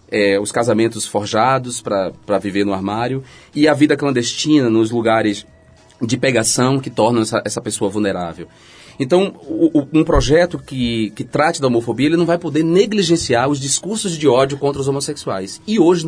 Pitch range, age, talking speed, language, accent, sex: 105-150 Hz, 30-49, 170 wpm, Portuguese, Brazilian, male